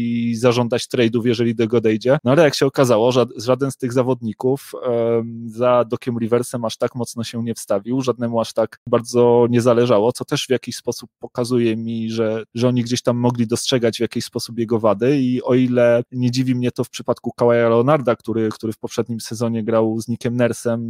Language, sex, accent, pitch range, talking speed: Polish, male, native, 115-125 Hz, 205 wpm